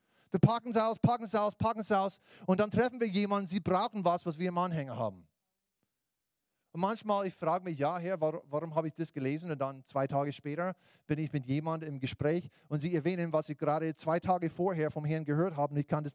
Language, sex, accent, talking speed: German, male, German, 240 wpm